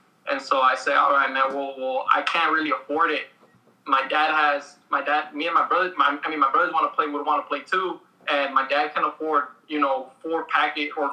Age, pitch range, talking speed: 20-39, 145-190 Hz, 245 wpm